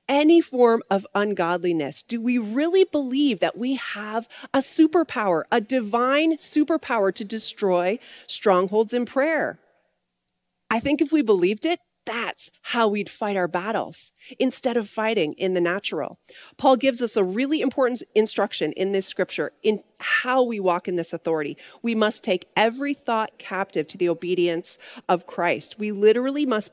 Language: English